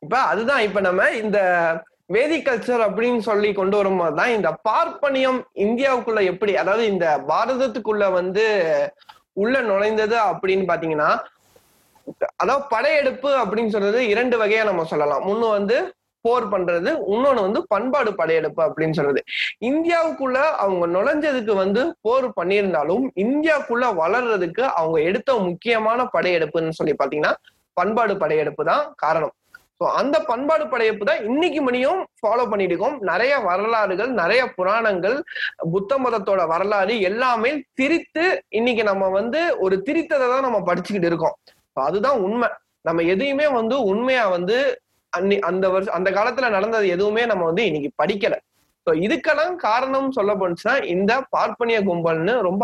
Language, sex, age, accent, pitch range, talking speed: Tamil, male, 20-39, native, 190-270 Hz, 125 wpm